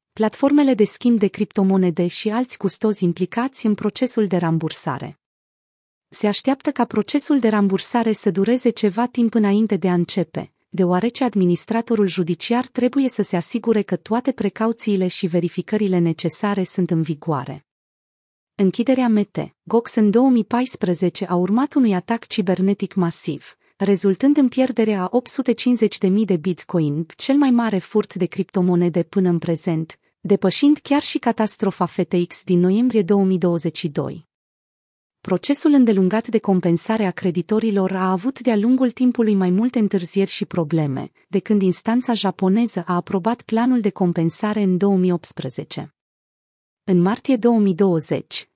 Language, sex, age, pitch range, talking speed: Romanian, female, 30-49, 180-230 Hz, 135 wpm